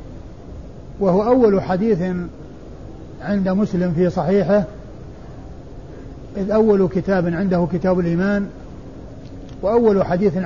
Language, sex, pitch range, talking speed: Arabic, male, 180-205 Hz, 85 wpm